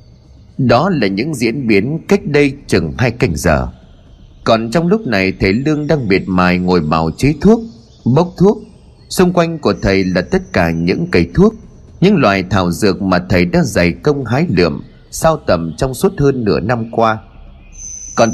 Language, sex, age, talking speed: Vietnamese, male, 30-49, 185 wpm